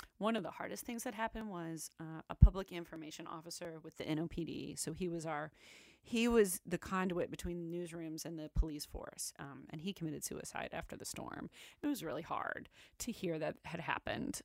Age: 30-49